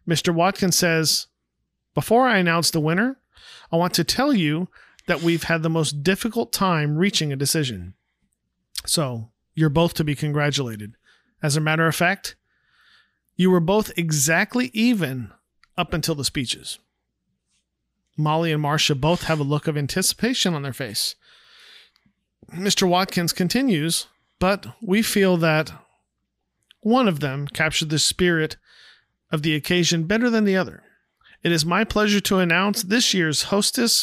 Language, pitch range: English, 155-210 Hz